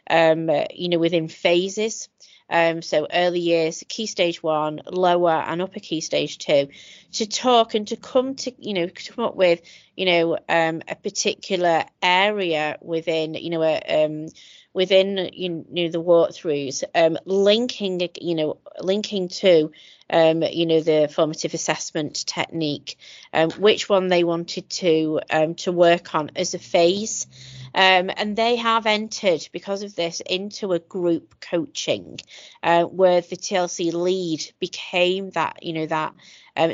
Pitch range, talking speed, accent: 165-200 Hz, 150 wpm, British